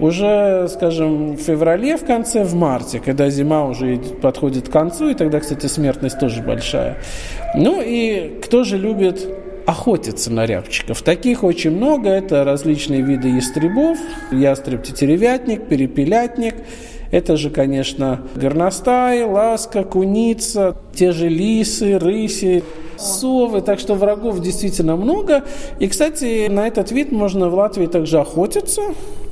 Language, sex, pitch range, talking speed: Russian, male, 135-230 Hz, 130 wpm